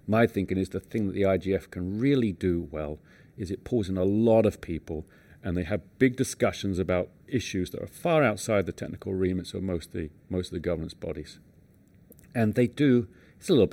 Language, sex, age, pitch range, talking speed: English, male, 40-59, 90-110 Hz, 205 wpm